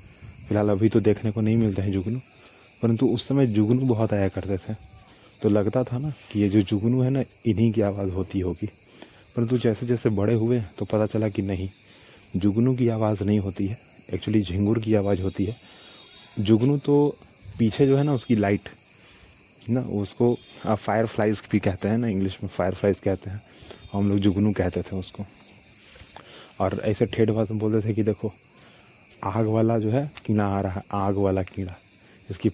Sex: male